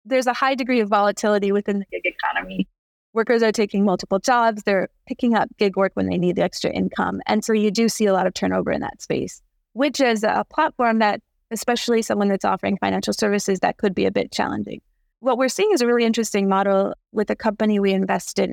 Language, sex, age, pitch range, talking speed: English, female, 30-49, 200-235 Hz, 220 wpm